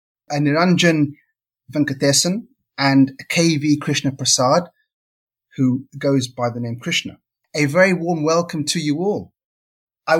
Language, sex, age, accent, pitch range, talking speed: English, male, 30-49, British, 125-160 Hz, 130 wpm